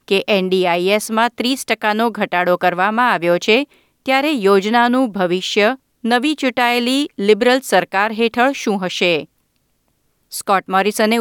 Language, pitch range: Gujarati, 185-240 Hz